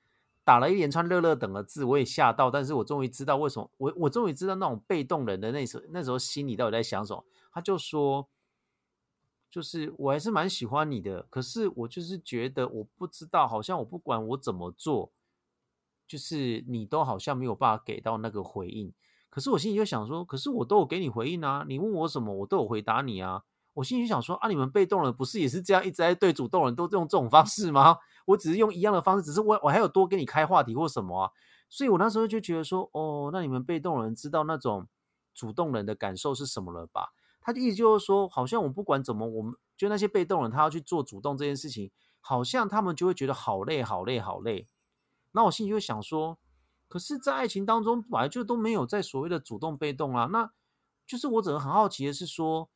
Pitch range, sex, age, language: 130-190 Hz, male, 30-49, Chinese